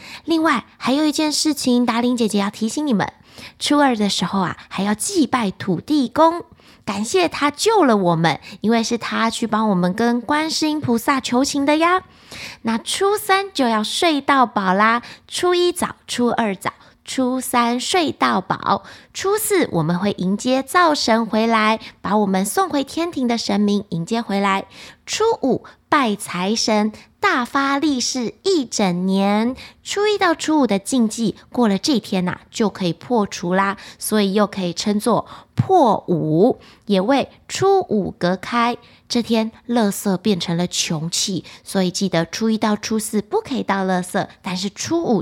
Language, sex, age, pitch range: Chinese, female, 20-39, 200-295 Hz